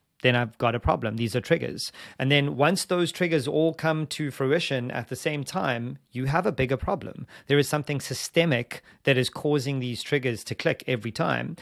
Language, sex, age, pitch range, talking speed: English, male, 30-49, 125-150 Hz, 200 wpm